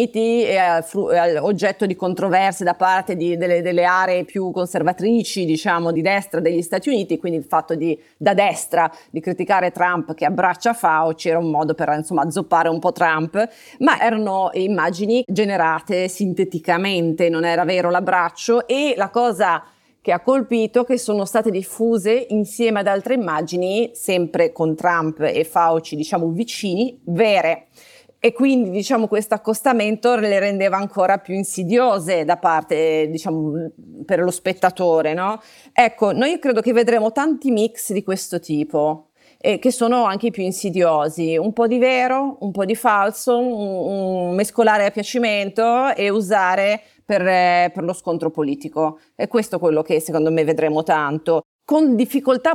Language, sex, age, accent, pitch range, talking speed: Italian, female, 30-49, native, 170-225 Hz, 155 wpm